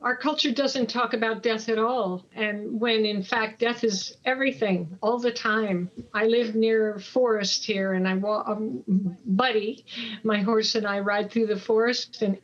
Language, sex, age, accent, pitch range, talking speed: English, female, 50-69, American, 205-240 Hz, 180 wpm